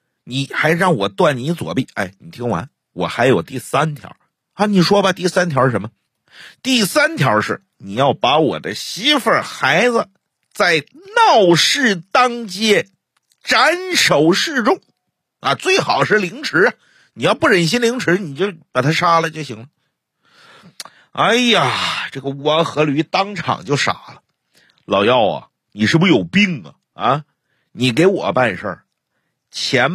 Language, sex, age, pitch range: Chinese, male, 50-69, 150-230 Hz